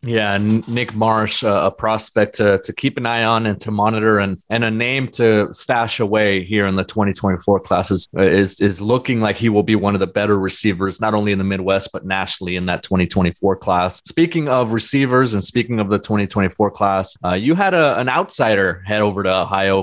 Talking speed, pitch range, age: 205 wpm, 100-120 Hz, 20-39